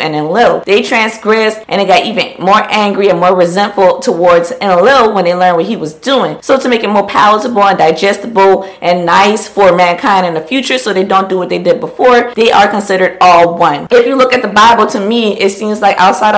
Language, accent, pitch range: English, American, 190-240 Hz